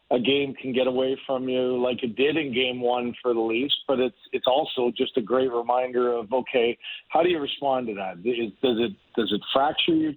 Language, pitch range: English, 120-145 Hz